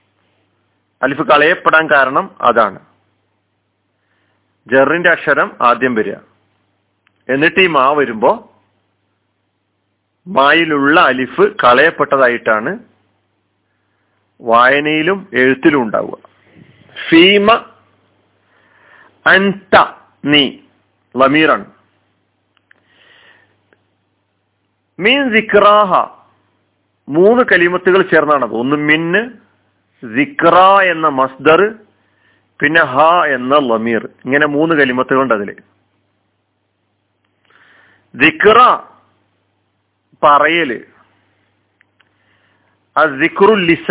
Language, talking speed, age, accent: Malayalam, 50 wpm, 40-59, native